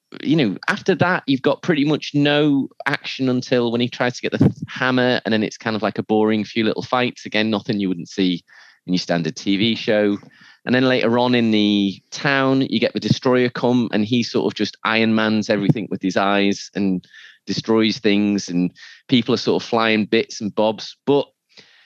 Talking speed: 205 wpm